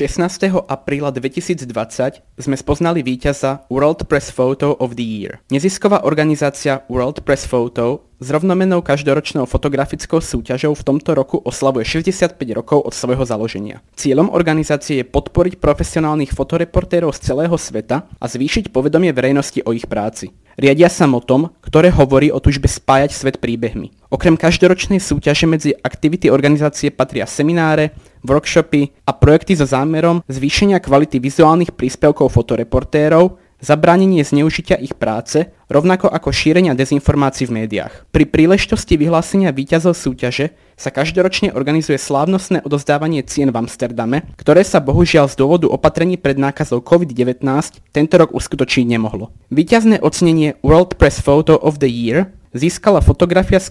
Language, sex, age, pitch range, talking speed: Slovak, male, 20-39, 135-165 Hz, 135 wpm